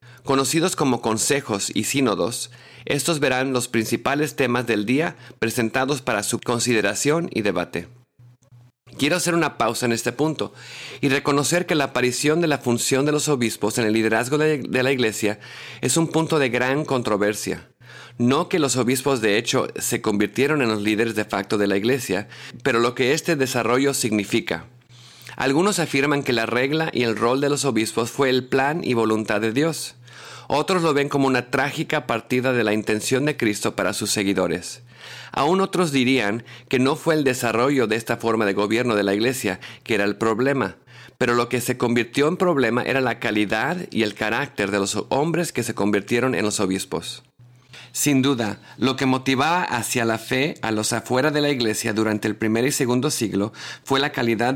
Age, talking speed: 40-59, 185 wpm